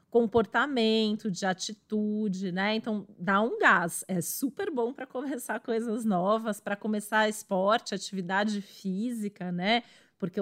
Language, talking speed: Portuguese, 125 wpm